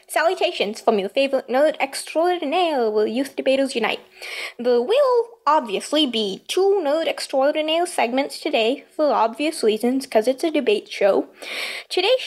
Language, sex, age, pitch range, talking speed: English, female, 20-39, 270-375 Hz, 135 wpm